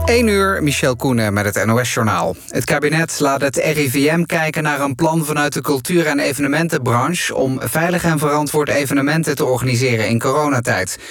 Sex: male